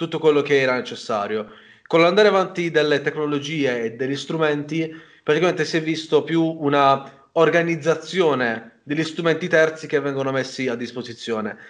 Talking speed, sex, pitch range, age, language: 145 wpm, male, 140-165 Hz, 20-39, Italian